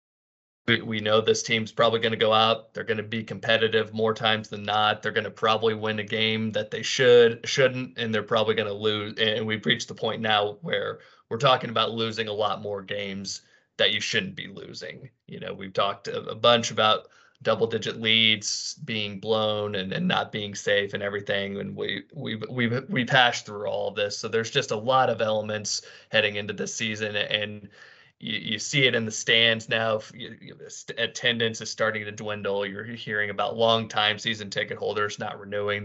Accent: American